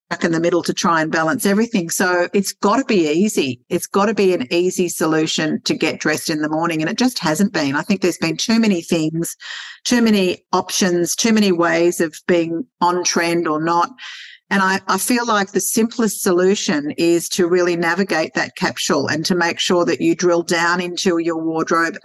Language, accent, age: English, Australian, 50-69